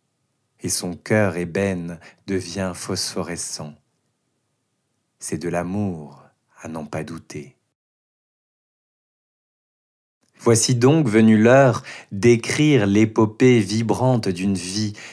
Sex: male